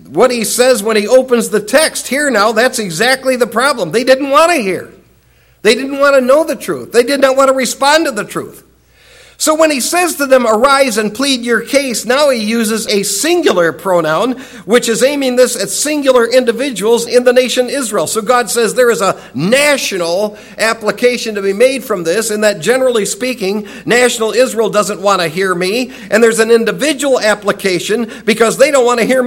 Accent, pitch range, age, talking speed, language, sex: American, 190-255 Hz, 60-79, 200 wpm, English, male